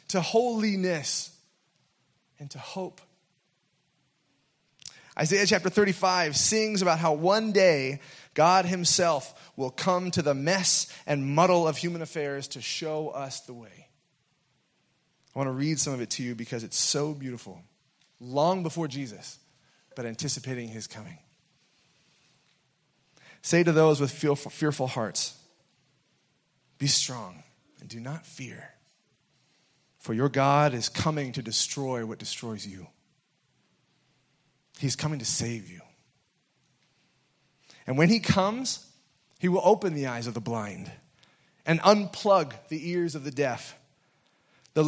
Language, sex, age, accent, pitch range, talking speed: English, male, 30-49, American, 135-175 Hz, 130 wpm